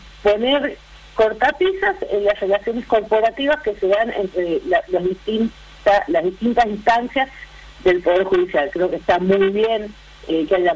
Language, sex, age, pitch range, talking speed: Spanish, female, 50-69, 175-225 Hz, 145 wpm